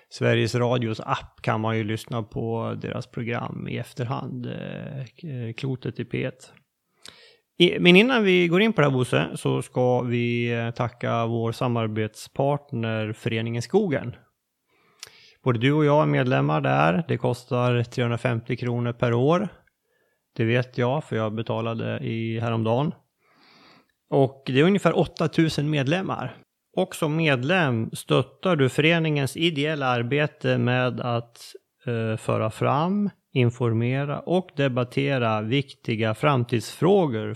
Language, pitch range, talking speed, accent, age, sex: Swedish, 115-150 Hz, 120 wpm, native, 30-49, male